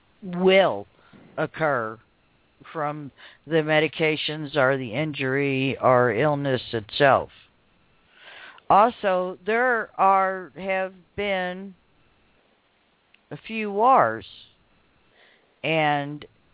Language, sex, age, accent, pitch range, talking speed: English, female, 60-79, American, 135-170 Hz, 75 wpm